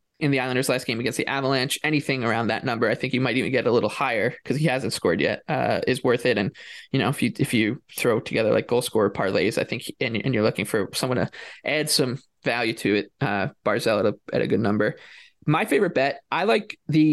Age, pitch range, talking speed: 20-39, 125-150 Hz, 250 wpm